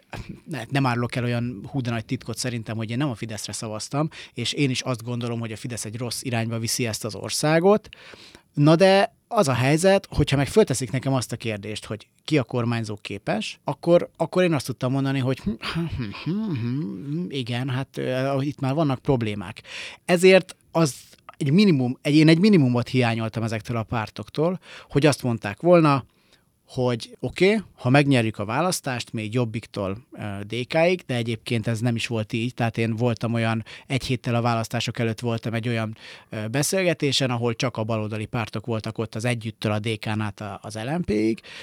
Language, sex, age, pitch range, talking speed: Hungarian, male, 30-49, 115-145 Hz, 175 wpm